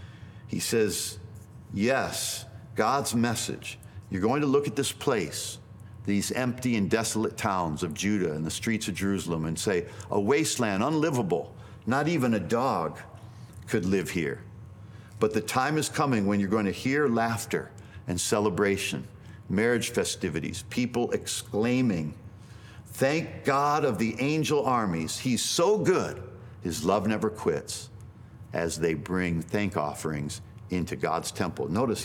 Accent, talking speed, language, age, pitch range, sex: American, 140 wpm, English, 50-69, 100-125 Hz, male